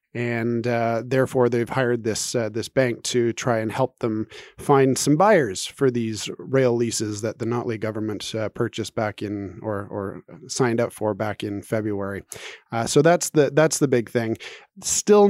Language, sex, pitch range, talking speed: English, male, 115-145 Hz, 180 wpm